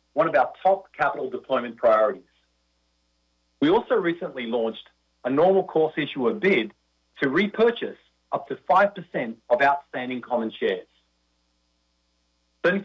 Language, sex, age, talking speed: English, male, 40-59, 120 wpm